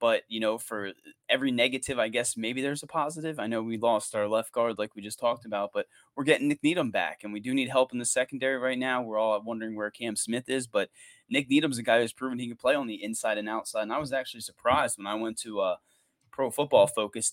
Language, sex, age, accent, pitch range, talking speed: English, male, 20-39, American, 110-140 Hz, 260 wpm